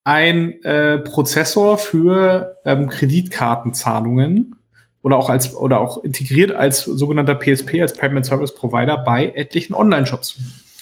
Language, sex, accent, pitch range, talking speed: German, male, German, 135-170 Hz, 120 wpm